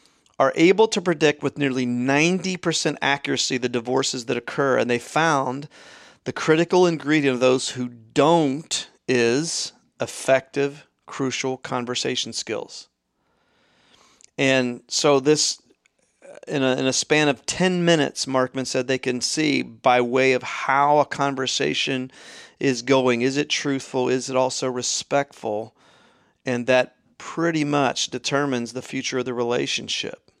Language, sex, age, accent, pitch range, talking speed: English, male, 40-59, American, 125-145 Hz, 130 wpm